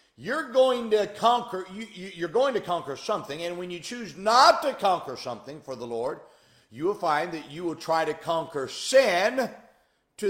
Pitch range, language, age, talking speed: 175-250 Hz, English, 50-69, 190 wpm